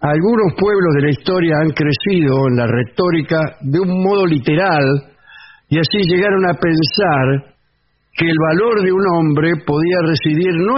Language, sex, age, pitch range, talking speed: English, male, 60-79, 135-170 Hz, 155 wpm